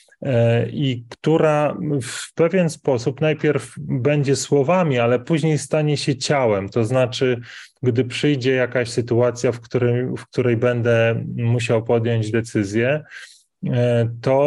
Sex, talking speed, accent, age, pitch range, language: male, 110 wpm, native, 30-49, 120-145 Hz, Polish